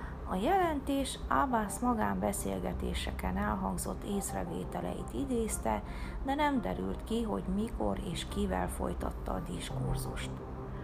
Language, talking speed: Hungarian, 100 wpm